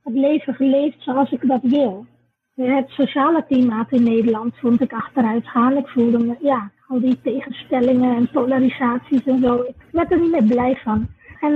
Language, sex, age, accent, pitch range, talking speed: Dutch, female, 20-39, Dutch, 250-290 Hz, 180 wpm